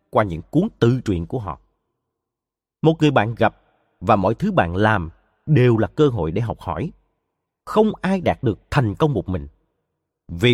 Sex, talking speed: male, 180 wpm